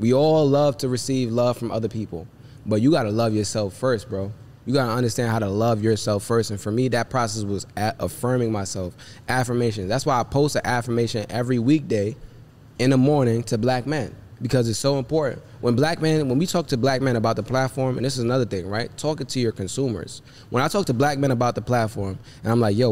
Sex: male